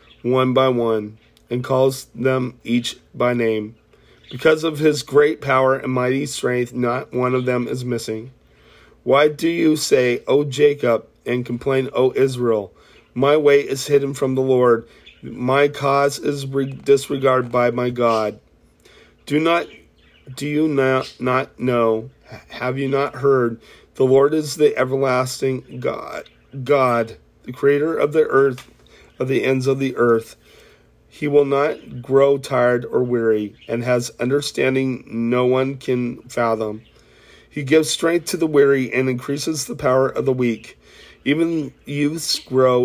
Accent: American